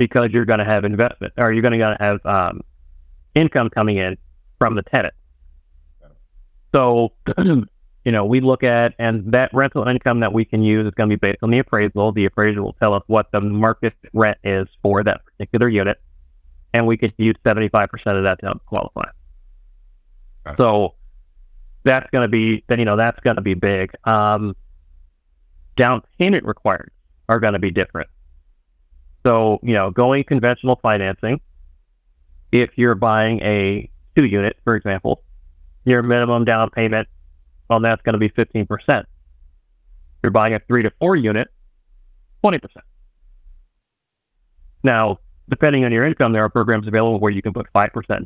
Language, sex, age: English, male, 30-49